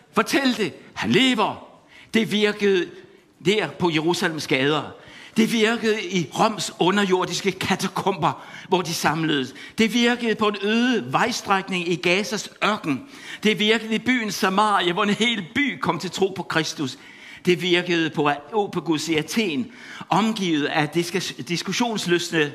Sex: male